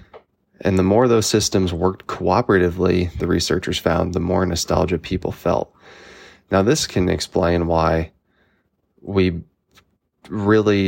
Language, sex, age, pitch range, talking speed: English, male, 20-39, 85-95 Hz, 120 wpm